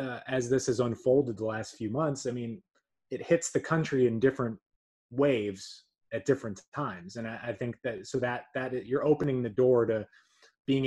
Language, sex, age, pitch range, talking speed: English, male, 20-39, 115-140 Hz, 195 wpm